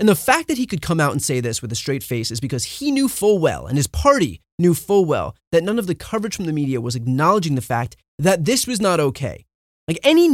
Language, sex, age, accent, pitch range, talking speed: English, male, 30-49, American, 125-185 Hz, 265 wpm